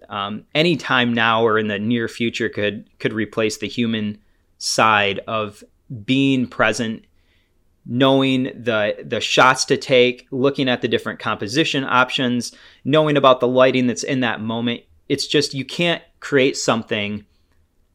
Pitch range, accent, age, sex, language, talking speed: 105-140 Hz, American, 30-49, male, English, 145 wpm